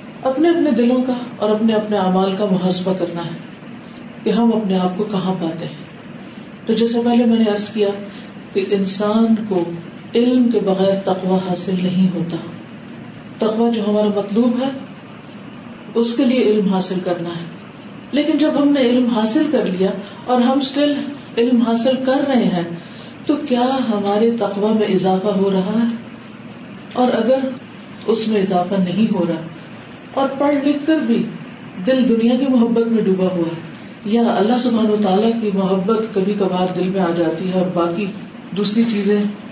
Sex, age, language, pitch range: female, 40-59, Urdu, 190-235 Hz